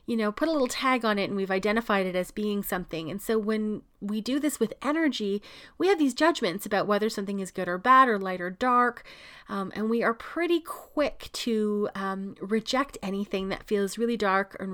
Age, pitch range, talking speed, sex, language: 30-49, 190-255 Hz, 215 wpm, female, English